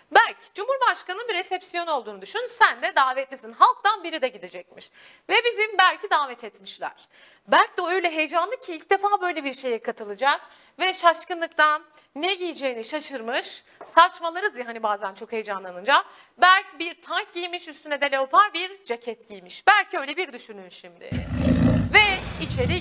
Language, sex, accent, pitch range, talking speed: Turkish, female, native, 240-370 Hz, 150 wpm